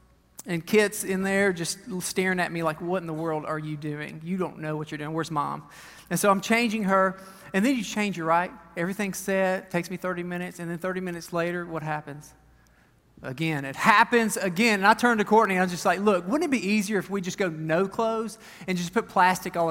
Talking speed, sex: 240 wpm, male